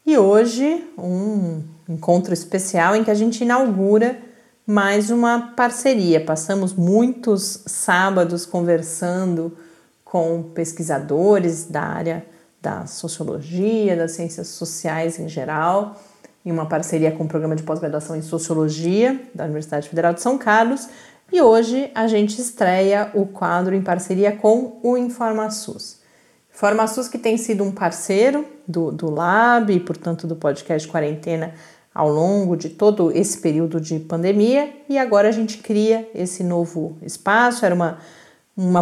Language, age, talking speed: Portuguese, 30-49, 140 wpm